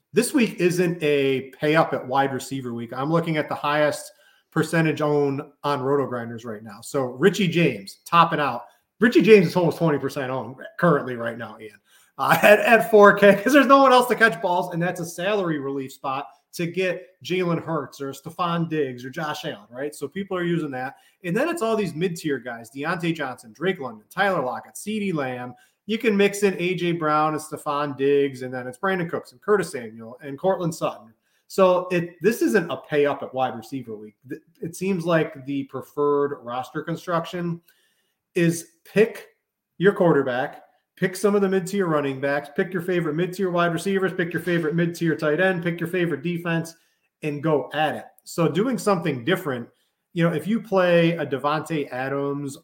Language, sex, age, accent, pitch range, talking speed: English, male, 30-49, American, 140-185 Hz, 185 wpm